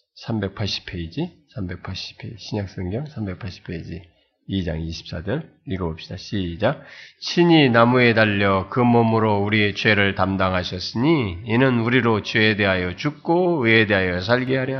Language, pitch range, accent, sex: Korean, 100-165 Hz, native, male